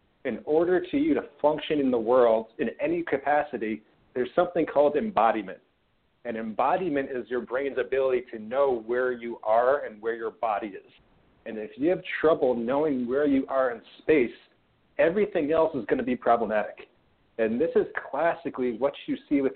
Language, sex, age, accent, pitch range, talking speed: English, male, 40-59, American, 125-180 Hz, 180 wpm